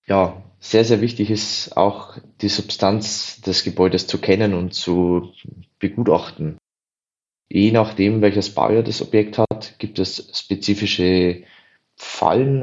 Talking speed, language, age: 125 wpm, German, 20-39